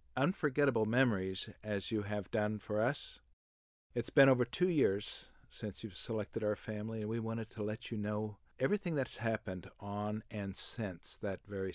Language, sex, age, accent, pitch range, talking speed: English, male, 50-69, American, 100-120 Hz, 170 wpm